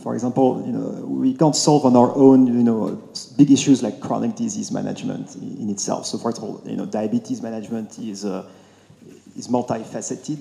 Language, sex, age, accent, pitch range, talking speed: English, male, 40-59, French, 120-150 Hz, 180 wpm